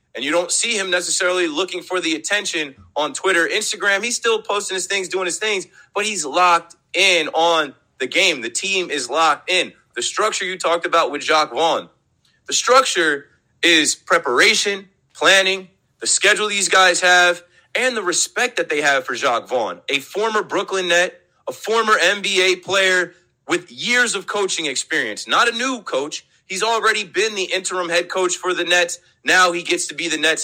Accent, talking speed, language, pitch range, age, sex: American, 185 wpm, English, 170-205 Hz, 30-49, male